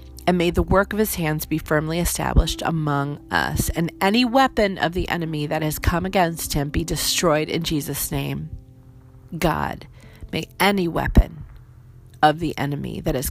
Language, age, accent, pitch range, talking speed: English, 40-59, American, 130-175 Hz, 165 wpm